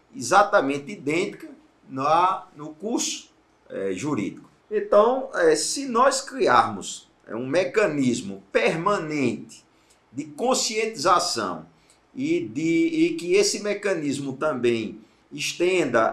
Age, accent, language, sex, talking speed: 50-69, Brazilian, Portuguese, male, 80 wpm